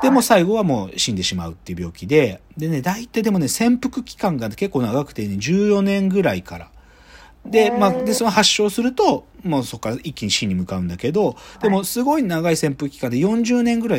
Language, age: Japanese, 40-59